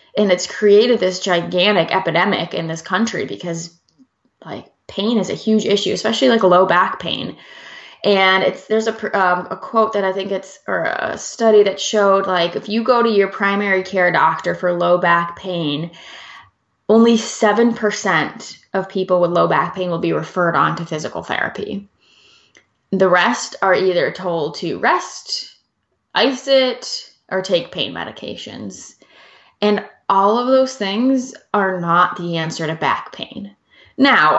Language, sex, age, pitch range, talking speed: English, female, 20-39, 180-220 Hz, 160 wpm